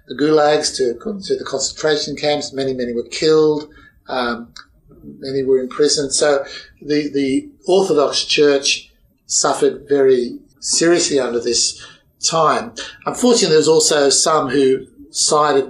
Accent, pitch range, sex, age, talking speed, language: Australian, 135-170 Hz, male, 50-69, 125 wpm, English